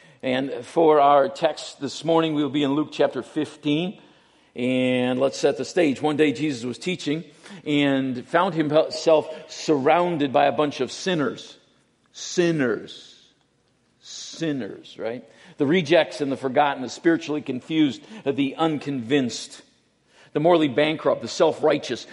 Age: 50-69